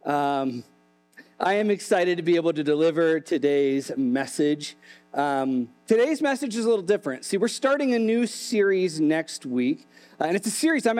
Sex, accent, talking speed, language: male, American, 170 wpm, English